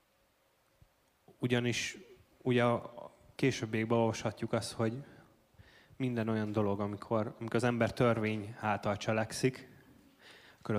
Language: Hungarian